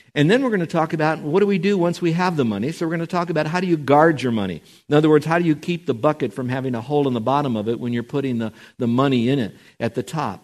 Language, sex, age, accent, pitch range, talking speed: English, male, 50-69, American, 125-170 Hz, 330 wpm